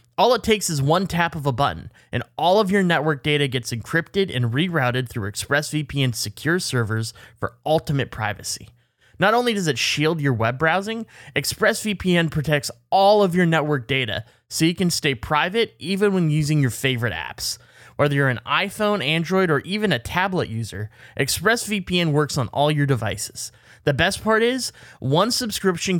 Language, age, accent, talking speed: English, 20-39, American, 170 wpm